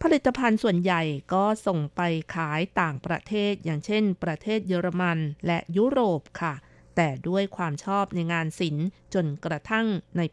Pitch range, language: 165-200 Hz, Thai